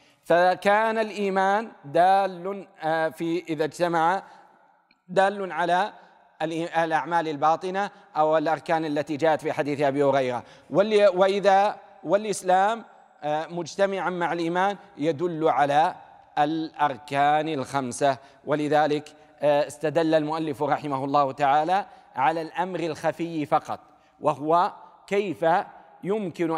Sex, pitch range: male, 140-170 Hz